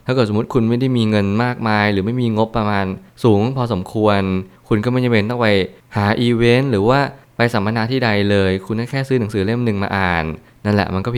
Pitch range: 100-120 Hz